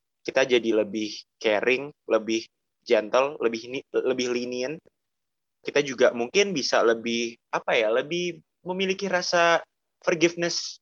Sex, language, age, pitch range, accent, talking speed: male, Indonesian, 20-39, 115-170 Hz, native, 110 wpm